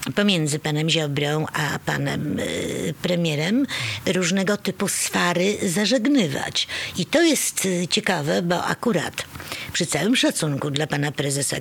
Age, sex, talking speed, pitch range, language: 50-69, female, 120 wpm, 155-215 Hz, Polish